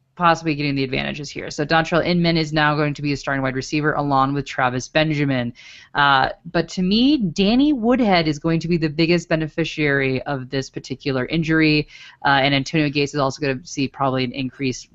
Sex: female